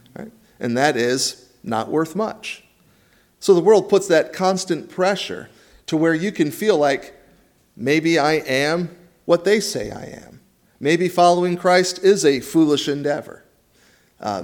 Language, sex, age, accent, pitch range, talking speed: English, male, 40-59, American, 125-165 Hz, 145 wpm